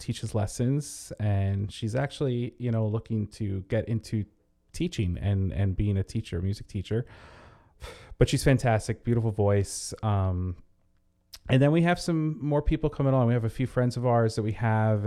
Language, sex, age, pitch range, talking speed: English, male, 30-49, 100-115 Hz, 175 wpm